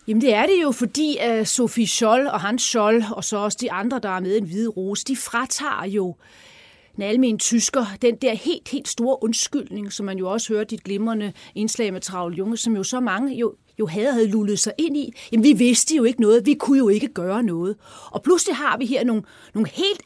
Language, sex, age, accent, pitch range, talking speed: Danish, female, 30-49, native, 200-250 Hz, 230 wpm